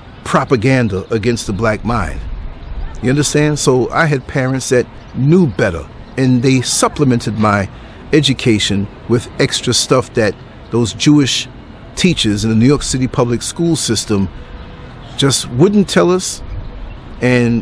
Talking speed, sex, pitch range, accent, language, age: 135 wpm, male, 115-150 Hz, American, English, 50-69